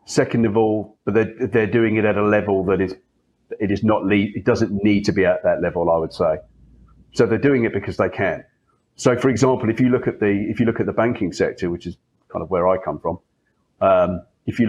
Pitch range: 95-115 Hz